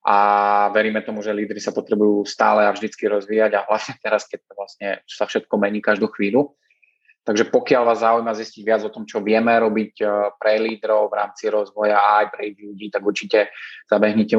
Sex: male